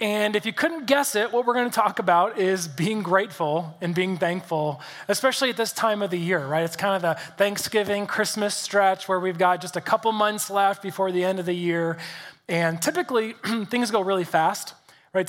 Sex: male